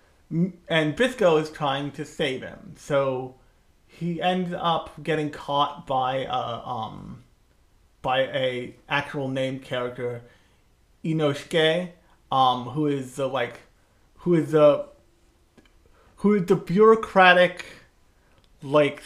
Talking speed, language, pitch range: 115 wpm, English, 130-170 Hz